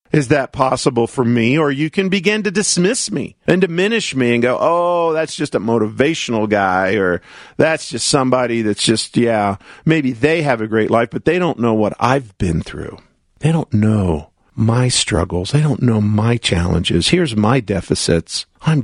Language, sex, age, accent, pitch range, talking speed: English, male, 50-69, American, 110-155 Hz, 185 wpm